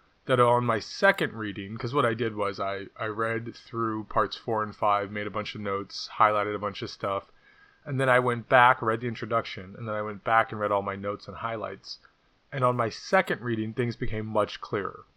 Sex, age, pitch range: male, 30-49, 110-135 Hz